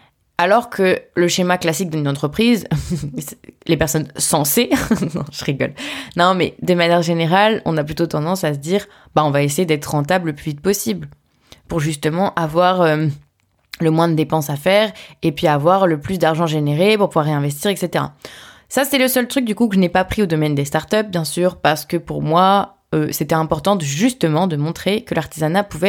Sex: female